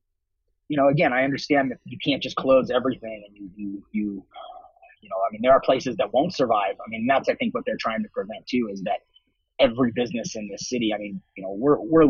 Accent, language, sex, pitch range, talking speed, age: American, English, male, 100-135 Hz, 250 wpm, 30-49